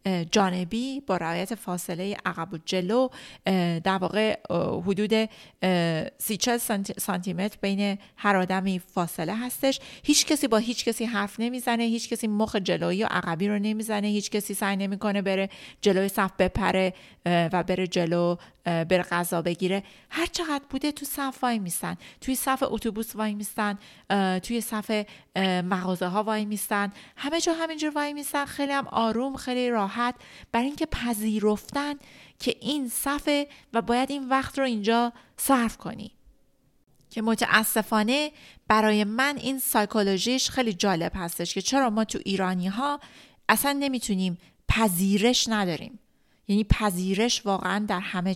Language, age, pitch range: Persian, 30-49, 190-240 Hz